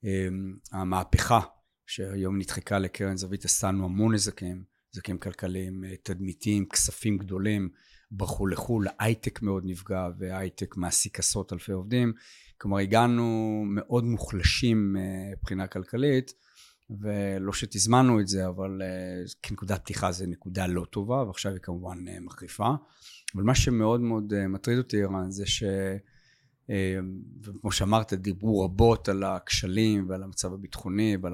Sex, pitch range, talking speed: male, 95-110 Hz, 130 wpm